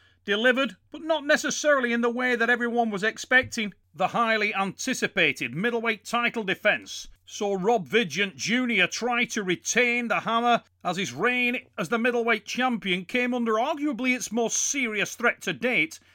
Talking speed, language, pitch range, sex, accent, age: 155 wpm, English, 170-235 Hz, male, British, 40-59